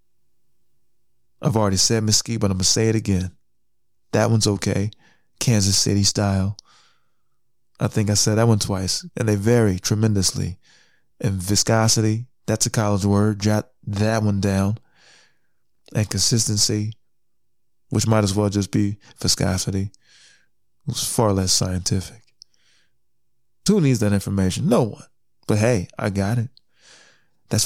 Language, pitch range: English, 100-120 Hz